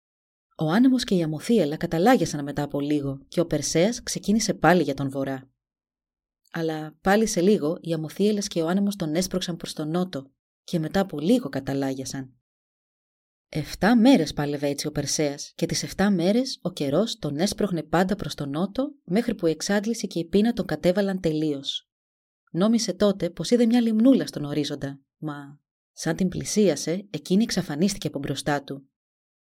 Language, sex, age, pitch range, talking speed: Greek, female, 30-49, 150-200 Hz, 165 wpm